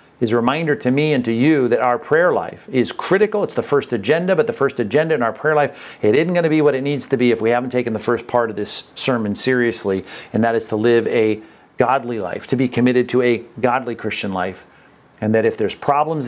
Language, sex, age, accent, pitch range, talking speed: English, male, 50-69, American, 120-150 Hz, 250 wpm